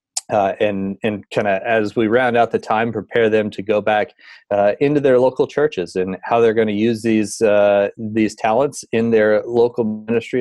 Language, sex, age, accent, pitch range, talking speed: English, male, 30-49, American, 100-120 Hz, 200 wpm